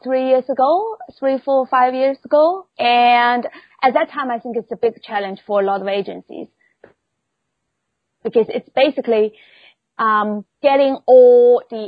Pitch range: 215-260 Hz